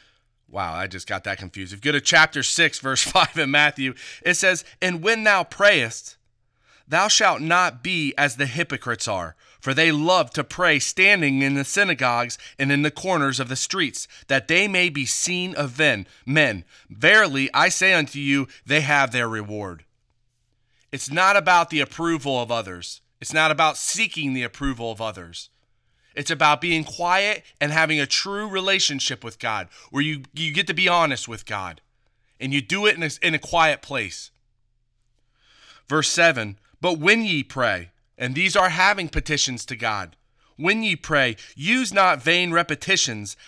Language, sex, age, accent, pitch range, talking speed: English, male, 30-49, American, 120-170 Hz, 175 wpm